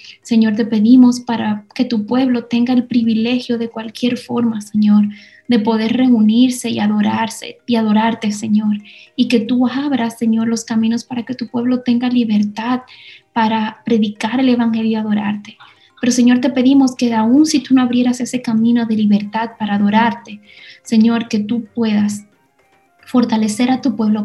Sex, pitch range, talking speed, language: female, 220-250 Hz, 160 wpm, Spanish